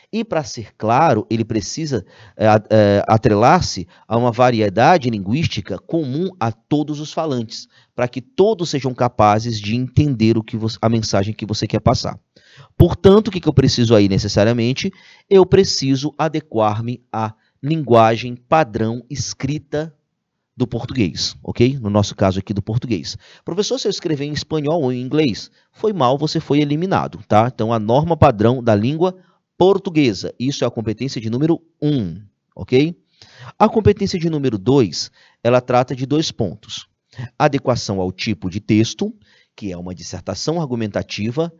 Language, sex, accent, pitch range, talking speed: Portuguese, male, Brazilian, 110-150 Hz, 150 wpm